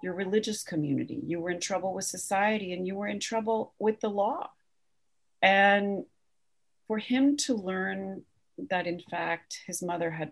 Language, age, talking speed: English, 40-59, 165 wpm